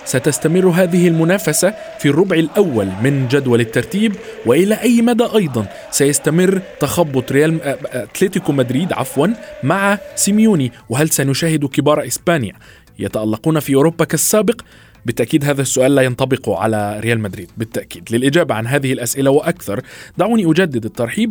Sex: male